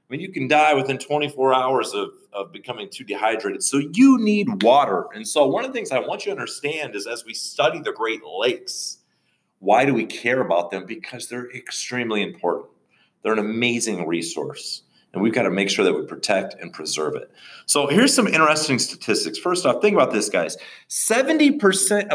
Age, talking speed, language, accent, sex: 40-59, 200 wpm, English, American, male